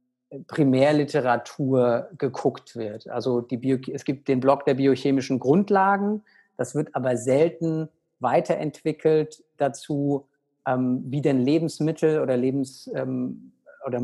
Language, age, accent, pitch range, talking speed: German, 50-69, German, 130-150 Hz, 115 wpm